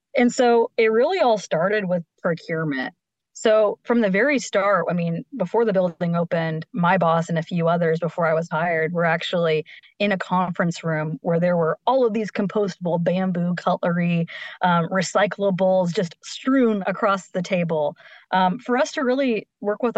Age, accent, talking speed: 20-39, American, 175 wpm